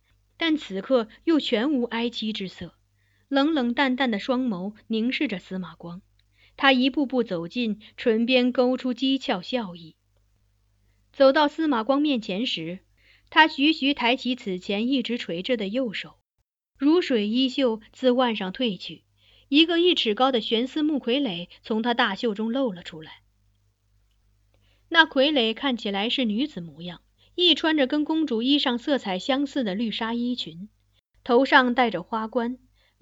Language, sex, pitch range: Chinese, female, 180-265 Hz